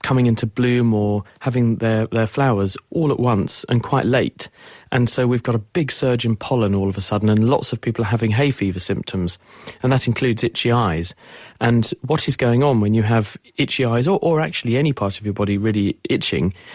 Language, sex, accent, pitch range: English, male, British, 110-130 Hz